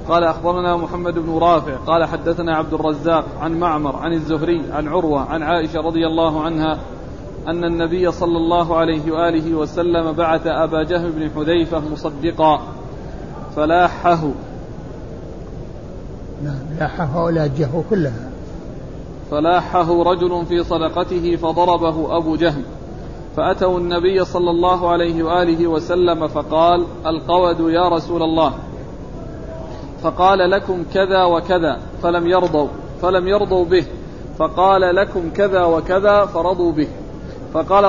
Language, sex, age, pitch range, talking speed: Arabic, male, 40-59, 160-180 Hz, 115 wpm